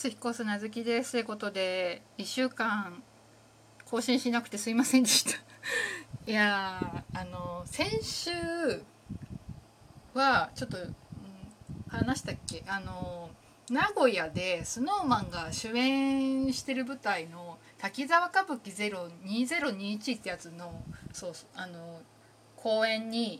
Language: Japanese